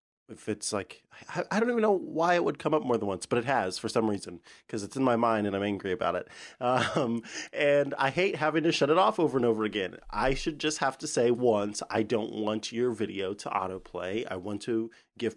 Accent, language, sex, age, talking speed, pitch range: American, English, male, 30-49, 240 wpm, 110-175 Hz